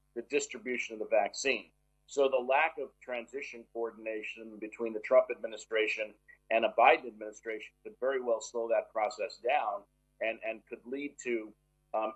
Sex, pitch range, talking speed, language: male, 115-145 Hz, 160 wpm, English